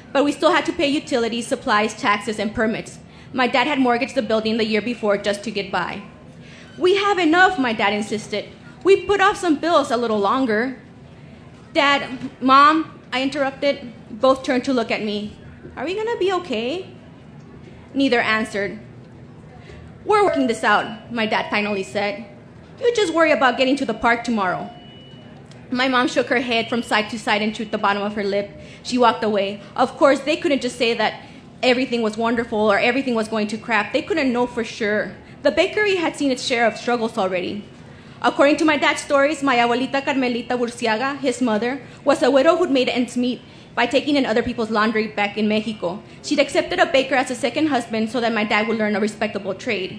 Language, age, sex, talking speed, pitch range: English, 20-39, female, 200 wpm, 215-275 Hz